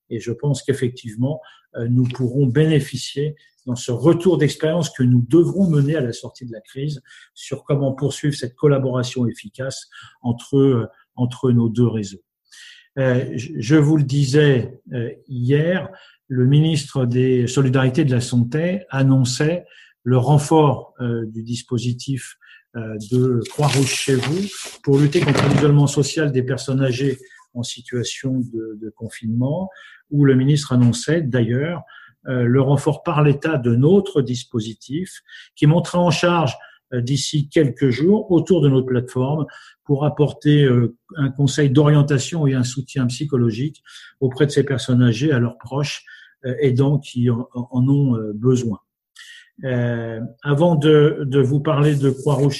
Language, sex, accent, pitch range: French, male, French, 125-150 Hz